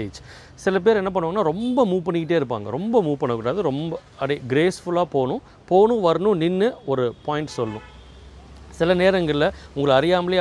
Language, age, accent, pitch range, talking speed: Tamil, 30-49, native, 115-160 Hz, 115 wpm